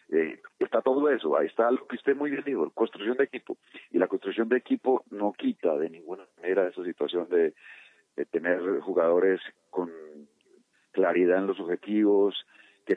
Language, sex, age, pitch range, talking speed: Spanish, male, 50-69, 100-145 Hz, 170 wpm